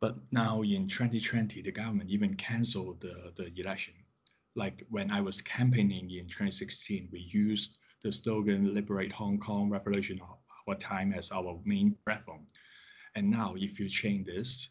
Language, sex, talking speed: English, male, 160 wpm